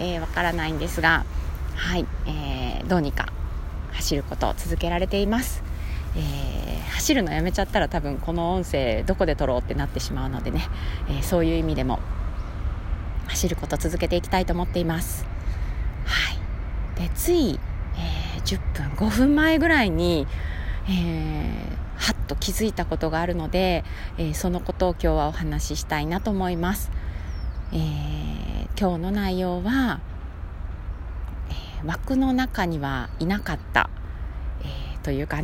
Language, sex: Japanese, female